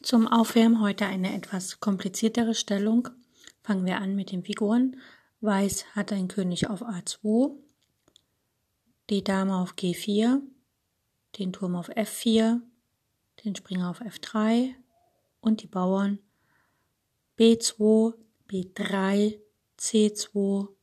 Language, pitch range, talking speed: German, 185-220 Hz, 105 wpm